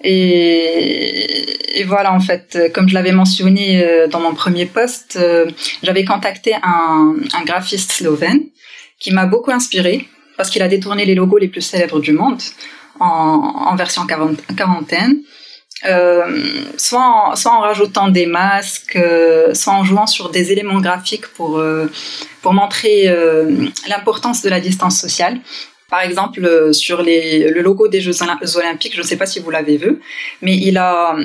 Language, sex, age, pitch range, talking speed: French, female, 20-39, 175-210 Hz, 155 wpm